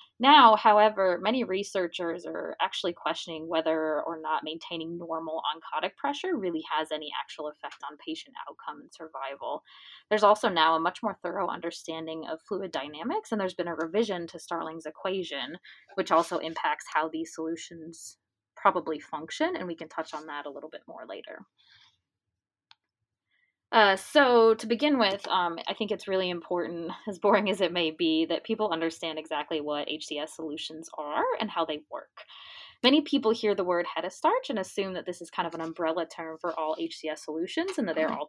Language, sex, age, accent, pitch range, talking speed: English, female, 20-39, American, 160-215 Hz, 185 wpm